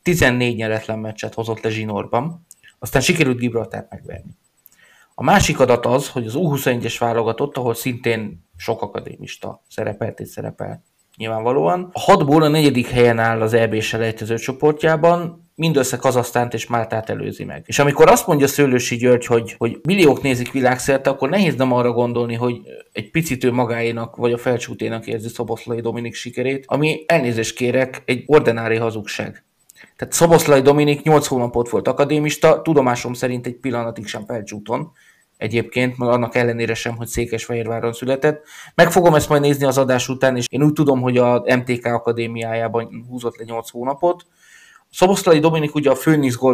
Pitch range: 115-145 Hz